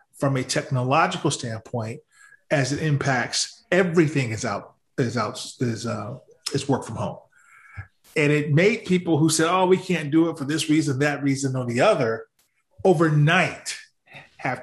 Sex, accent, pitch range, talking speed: male, American, 130-160 Hz, 140 wpm